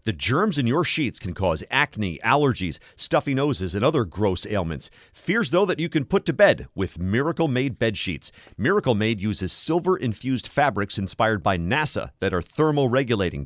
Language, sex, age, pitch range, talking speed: English, male, 40-59, 100-145 Hz, 165 wpm